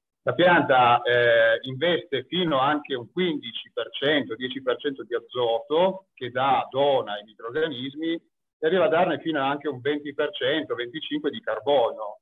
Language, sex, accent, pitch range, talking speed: Italian, male, native, 125-180 Hz, 135 wpm